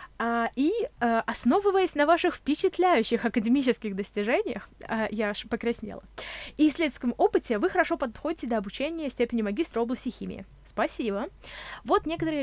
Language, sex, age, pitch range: Russian, female, 20-39, 215-315 Hz